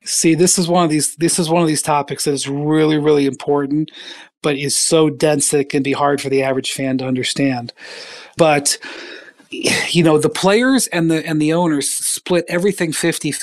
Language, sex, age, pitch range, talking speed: English, male, 40-59, 145-180 Hz, 195 wpm